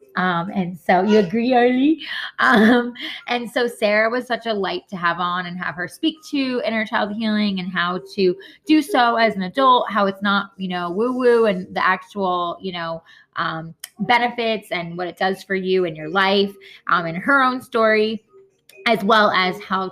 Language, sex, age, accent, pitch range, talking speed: English, female, 20-39, American, 185-245 Hz, 195 wpm